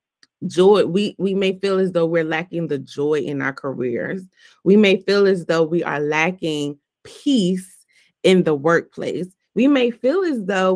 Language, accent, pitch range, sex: English, American, 160-195 Hz, female